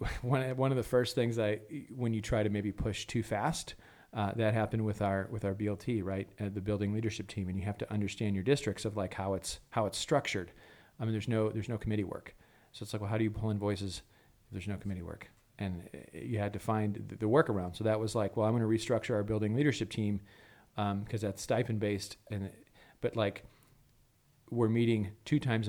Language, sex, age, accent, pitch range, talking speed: English, male, 40-59, American, 100-115 Hz, 225 wpm